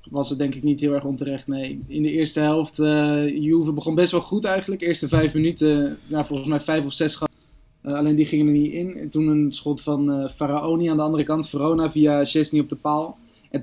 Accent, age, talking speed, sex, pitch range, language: Dutch, 20-39, 245 wpm, male, 145-160 Hz, Dutch